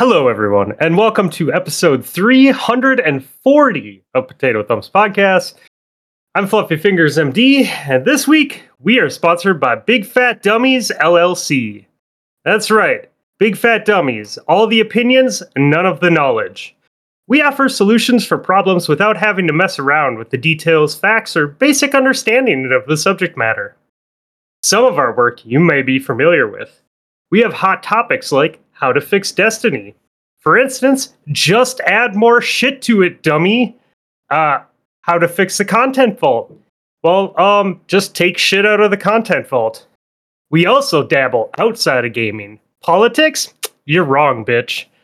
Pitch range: 150-230 Hz